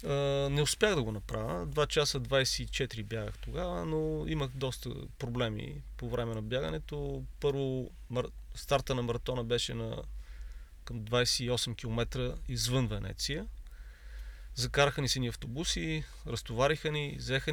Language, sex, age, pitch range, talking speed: Bulgarian, male, 30-49, 115-145 Hz, 125 wpm